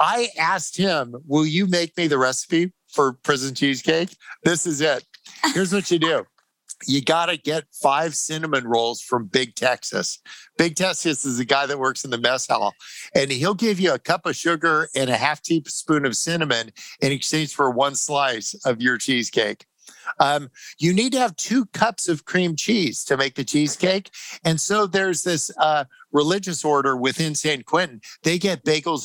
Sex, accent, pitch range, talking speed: male, American, 145-190 Hz, 185 wpm